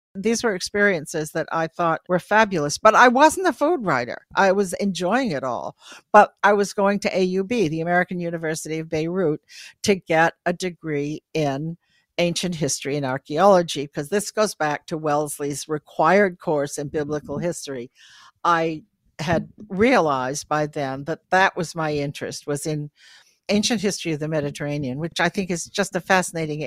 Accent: American